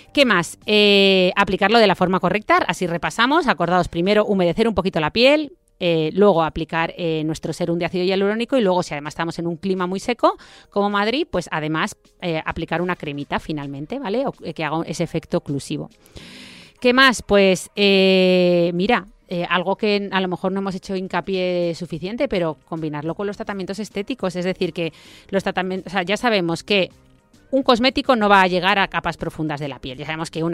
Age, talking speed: 30-49, 195 wpm